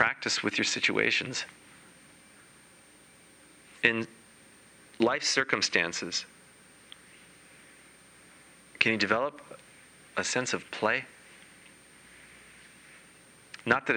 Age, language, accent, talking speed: 40-59, English, American, 70 wpm